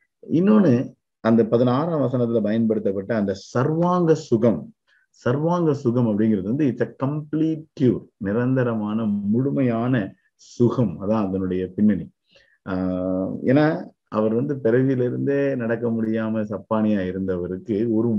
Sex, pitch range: male, 100-130 Hz